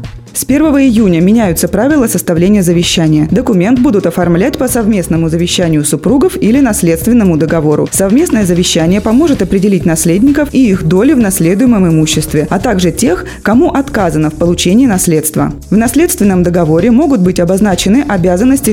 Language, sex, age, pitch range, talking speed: Russian, female, 20-39, 170-240 Hz, 140 wpm